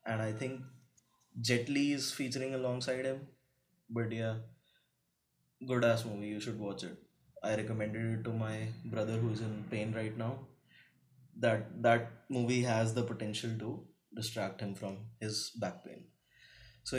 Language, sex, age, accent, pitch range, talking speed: English, male, 20-39, Indian, 115-135 Hz, 155 wpm